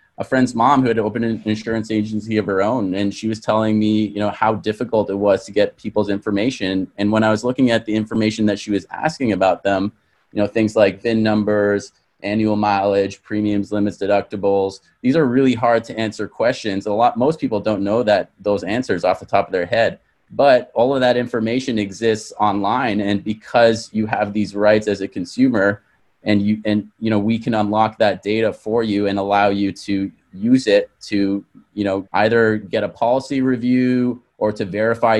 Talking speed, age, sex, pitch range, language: 205 wpm, 30-49, male, 100-115 Hz, English